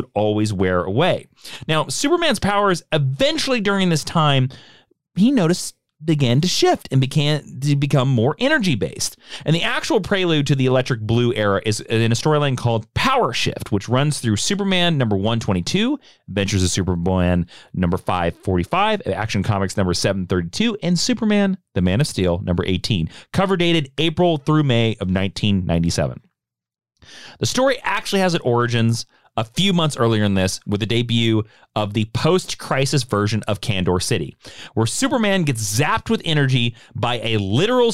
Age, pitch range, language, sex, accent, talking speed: 40-59, 105-170 Hz, English, male, American, 155 wpm